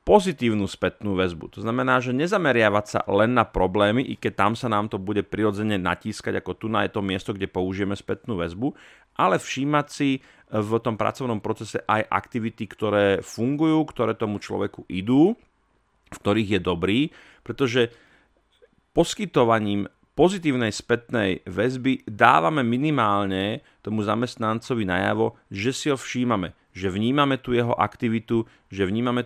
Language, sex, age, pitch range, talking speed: Slovak, male, 30-49, 100-120 Hz, 140 wpm